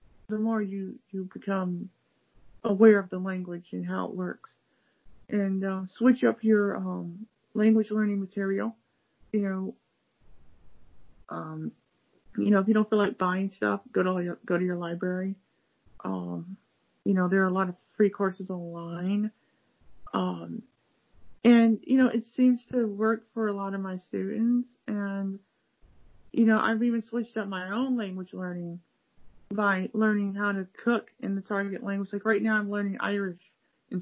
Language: English